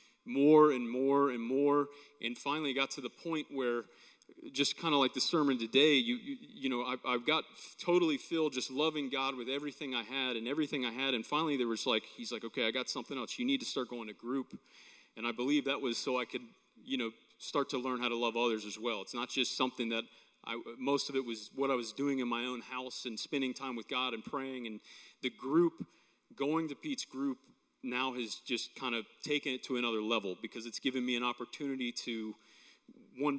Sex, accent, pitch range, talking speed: male, American, 120-145 Hz, 230 wpm